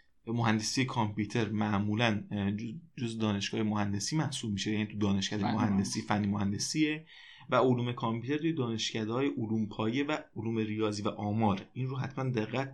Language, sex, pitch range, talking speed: Persian, male, 105-130 Hz, 145 wpm